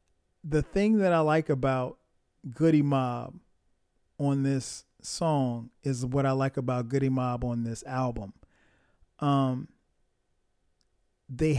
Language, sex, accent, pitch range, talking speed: English, male, American, 120-150 Hz, 120 wpm